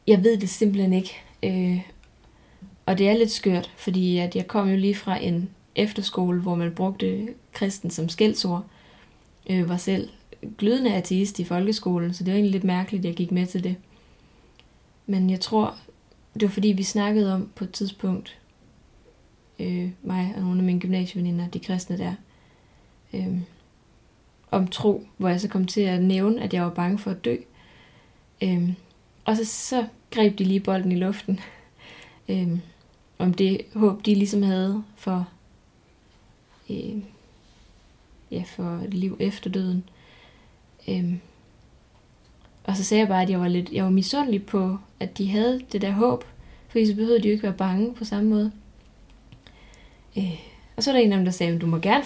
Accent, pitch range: native, 180-210 Hz